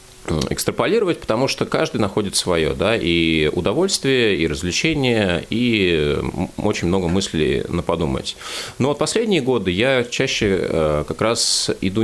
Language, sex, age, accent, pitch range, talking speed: Russian, male, 30-49, native, 80-110 Hz, 125 wpm